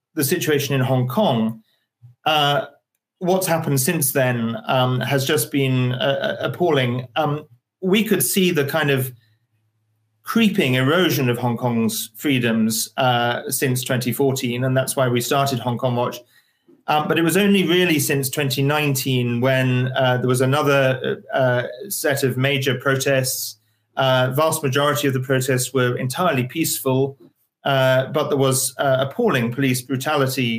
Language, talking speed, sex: English, 145 wpm, male